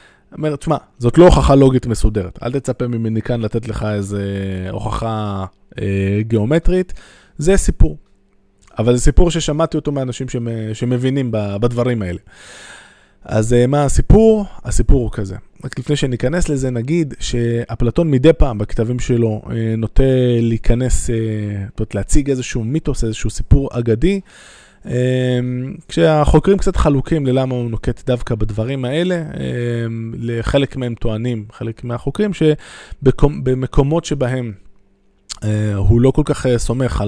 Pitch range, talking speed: 110-140 Hz, 125 wpm